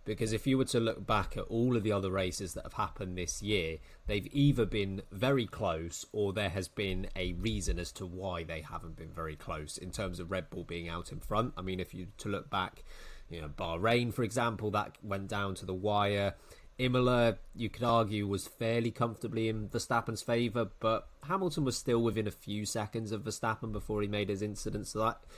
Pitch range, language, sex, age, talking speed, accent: 100-125 Hz, English, male, 20-39, 215 wpm, British